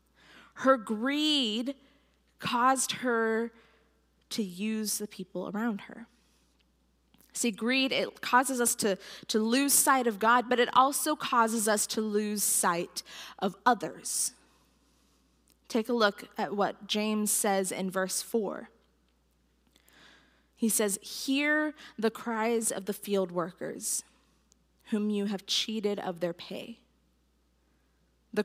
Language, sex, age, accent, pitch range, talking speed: English, female, 20-39, American, 205-260 Hz, 120 wpm